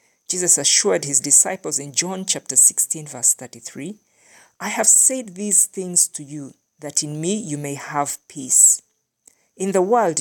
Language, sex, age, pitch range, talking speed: English, female, 50-69, 145-185 Hz, 160 wpm